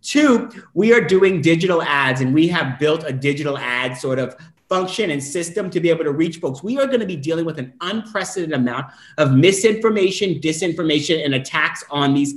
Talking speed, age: 200 wpm, 30-49